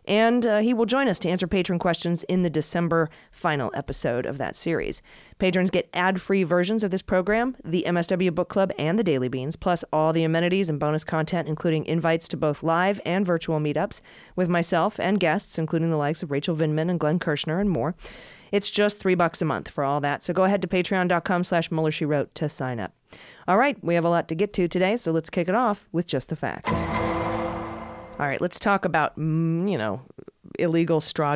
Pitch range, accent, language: 150-180 Hz, American, English